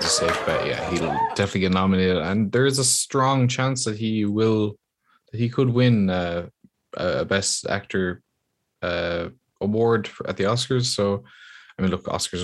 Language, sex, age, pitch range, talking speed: English, male, 20-39, 90-105 Hz, 175 wpm